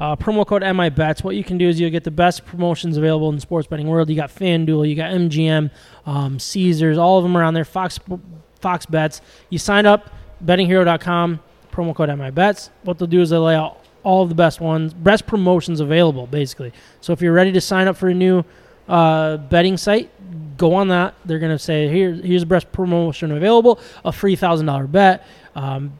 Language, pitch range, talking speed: English, 155-185 Hz, 210 wpm